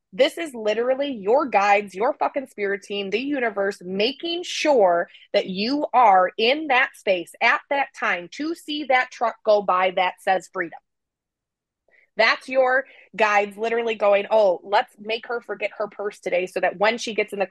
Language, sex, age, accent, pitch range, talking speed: English, female, 20-39, American, 185-235 Hz, 175 wpm